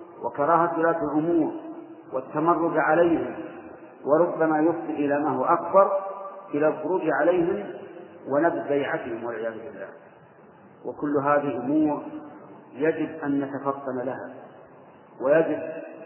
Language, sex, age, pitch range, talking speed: Arabic, male, 50-69, 145-175 Hz, 95 wpm